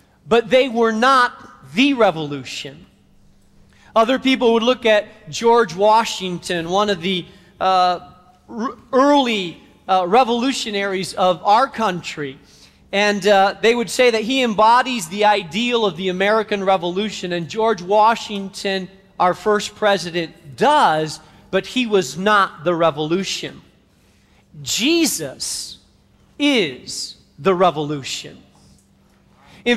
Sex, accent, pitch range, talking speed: male, American, 185-260 Hz, 110 wpm